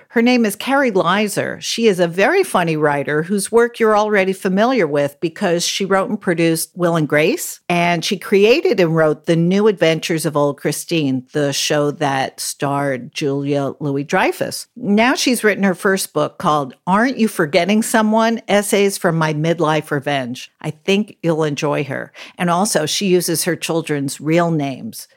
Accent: American